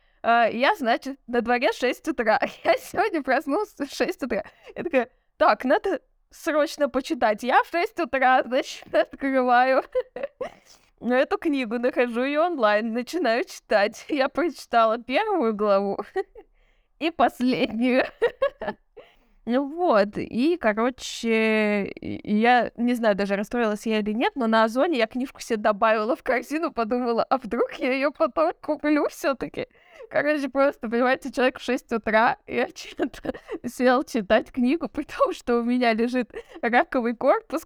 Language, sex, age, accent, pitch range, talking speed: Russian, female, 20-39, native, 235-300 Hz, 140 wpm